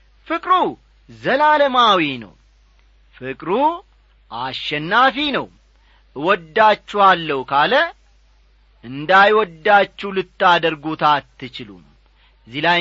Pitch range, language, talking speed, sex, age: 160-250 Hz, Amharic, 55 wpm, male, 40-59